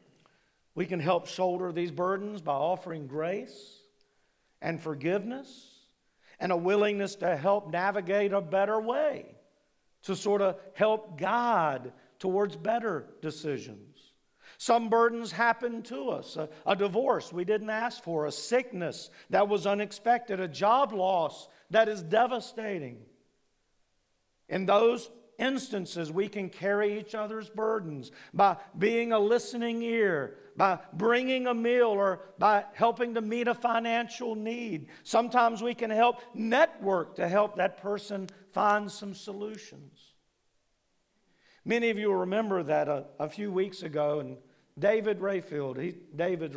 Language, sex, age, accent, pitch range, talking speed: English, male, 50-69, American, 170-225 Hz, 135 wpm